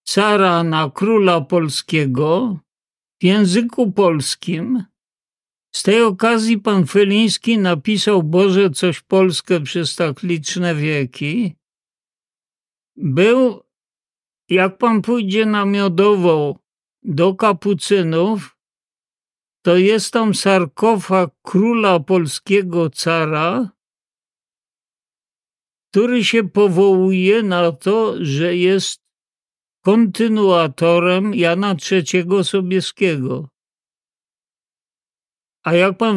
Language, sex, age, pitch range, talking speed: Polish, male, 50-69, 170-210 Hz, 80 wpm